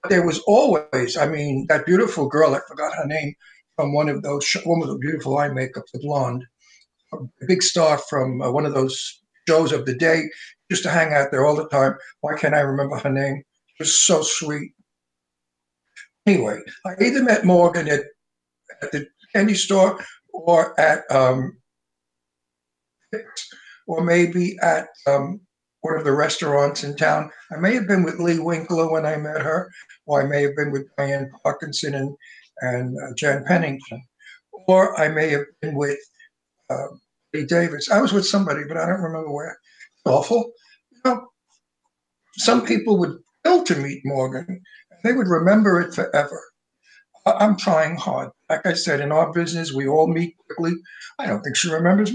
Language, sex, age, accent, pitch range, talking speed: English, male, 60-79, American, 140-185 Hz, 175 wpm